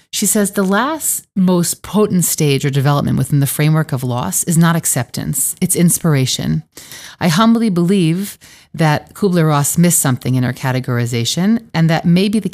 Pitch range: 140-180 Hz